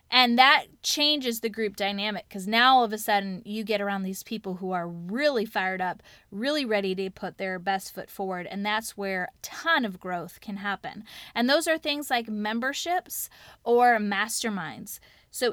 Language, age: English, 30-49